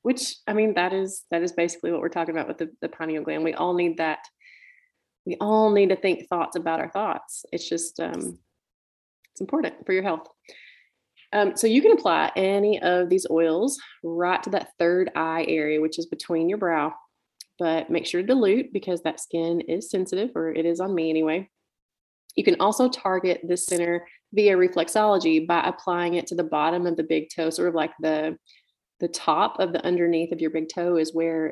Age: 30-49